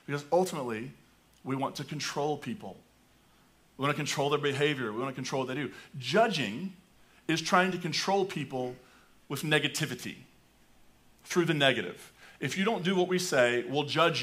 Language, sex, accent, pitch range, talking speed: English, male, American, 130-175 Hz, 170 wpm